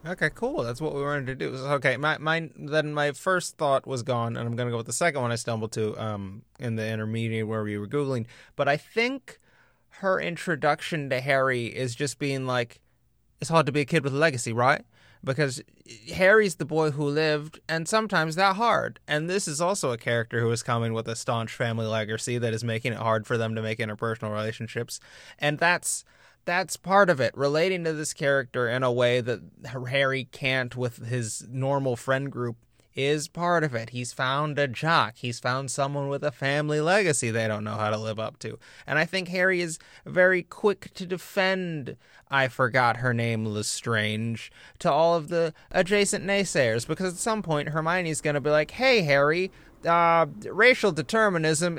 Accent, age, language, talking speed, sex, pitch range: American, 20-39, English, 195 wpm, male, 120-165 Hz